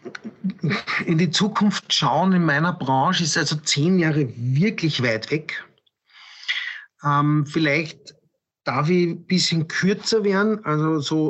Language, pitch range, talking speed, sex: German, 140-165 Hz, 130 wpm, male